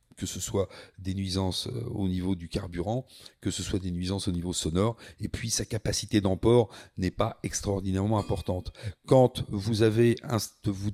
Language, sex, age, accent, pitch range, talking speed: French, male, 40-59, French, 100-115 Hz, 165 wpm